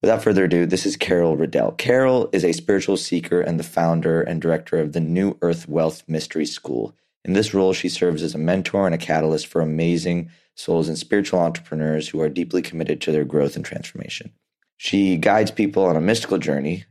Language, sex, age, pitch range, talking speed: English, male, 20-39, 80-90 Hz, 200 wpm